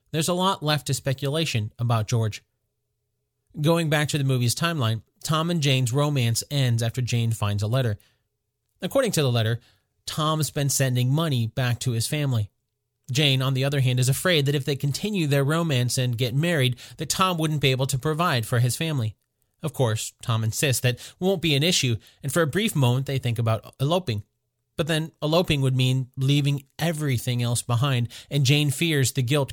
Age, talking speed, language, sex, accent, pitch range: 30-49, 195 wpm, English, male, American, 120-150 Hz